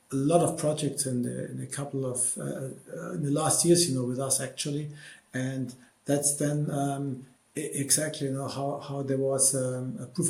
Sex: male